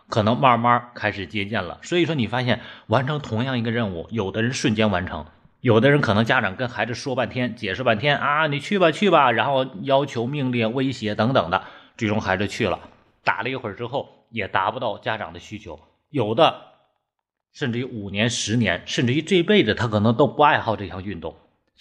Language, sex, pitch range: Chinese, male, 100-125 Hz